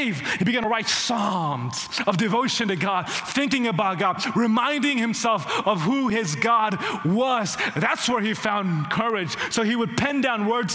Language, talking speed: English, 165 wpm